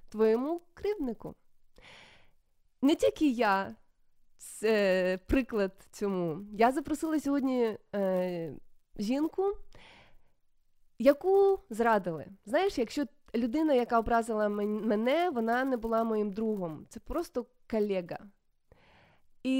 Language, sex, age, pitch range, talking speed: Ukrainian, female, 20-39, 200-265 Hz, 95 wpm